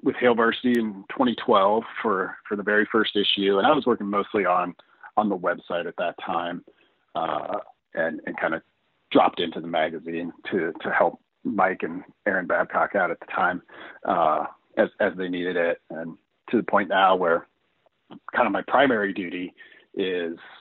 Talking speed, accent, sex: 180 wpm, American, male